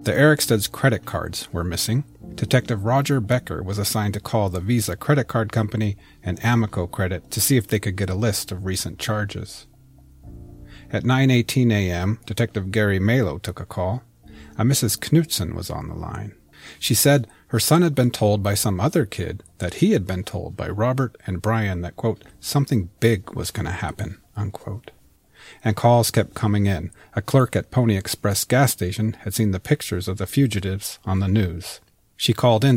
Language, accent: English, American